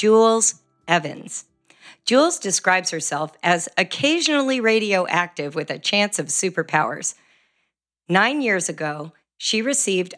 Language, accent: English, American